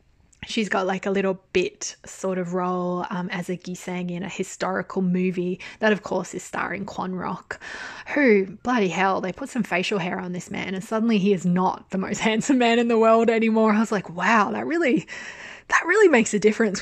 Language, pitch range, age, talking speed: English, 185-215 Hz, 20-39, 210 wpm